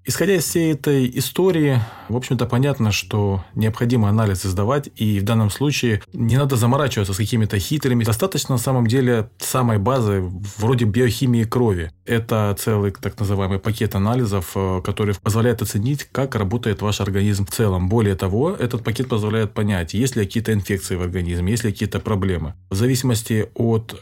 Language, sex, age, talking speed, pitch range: Russian, male, 20-39, 160 wpm, 95-120 Hz